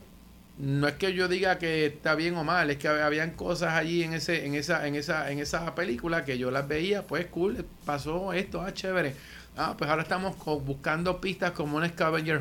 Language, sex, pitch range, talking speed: English, male, 140-175 Hz, 220 wpm